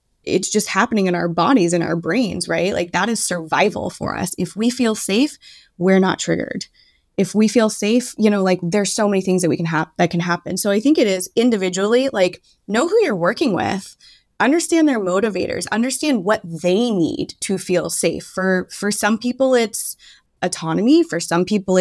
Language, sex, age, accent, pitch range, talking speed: English, female, 20-39, American, 175-235 Hz, 200 wpm